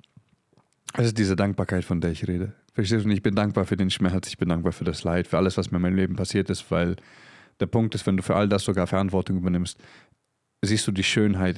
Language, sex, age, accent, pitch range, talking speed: German, male, 30-49, German, 90-100 Hz, 250 wpm